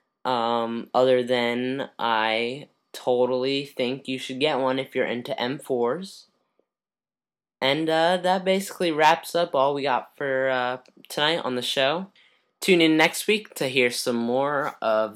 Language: English